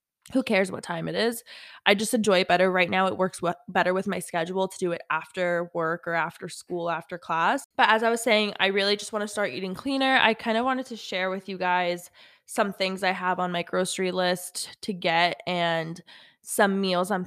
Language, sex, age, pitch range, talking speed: English, female, 20-39, 170-200 Hz, 225 wpm